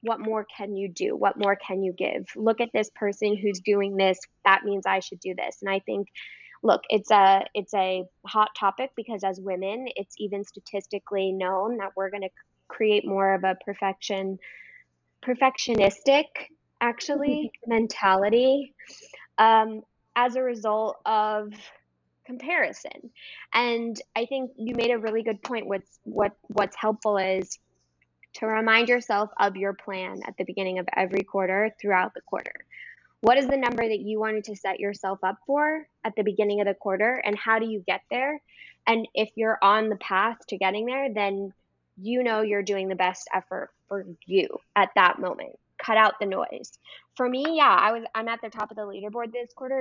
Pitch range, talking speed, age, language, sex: 195-230 Hz, 180 wpm, 10-29, English, female